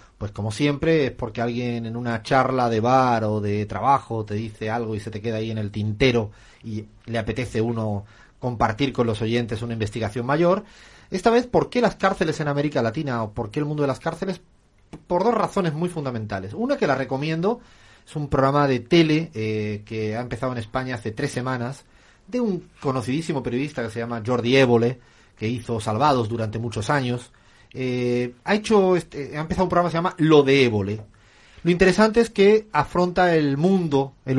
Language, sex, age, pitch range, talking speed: Spanish, male, 30-49, 115-155 Hz, 195 wpm